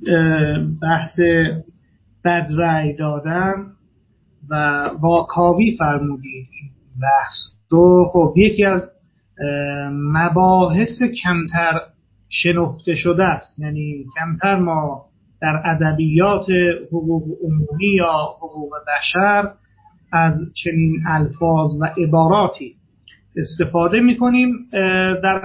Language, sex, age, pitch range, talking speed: Persian, male, 30-49, 150-185 Hz, 80 wpm